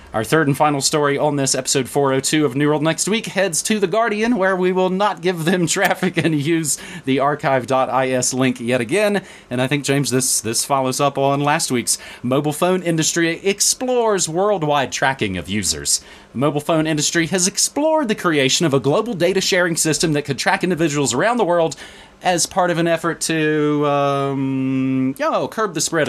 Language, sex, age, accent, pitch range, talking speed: English, male, 30-49, American, 125-170 Hz, 190 wpm